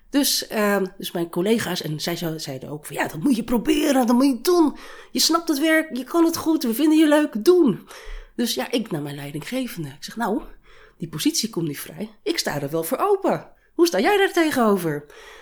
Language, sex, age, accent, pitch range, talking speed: Dutch, female, 30-49, Dutch, 170-280 Hz, 220 wpm